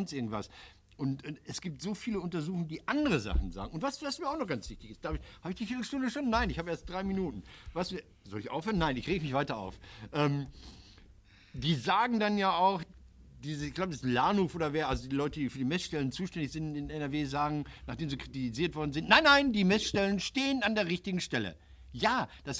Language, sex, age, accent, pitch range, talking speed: German, male, 60-79, German, 125-175 Hz, 225 wpm